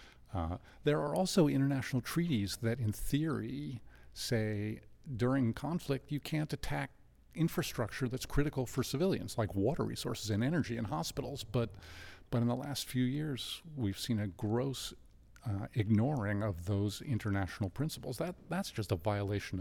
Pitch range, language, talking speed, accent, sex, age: 95-130 Hz, English, 150 wpm, American, male, 50-69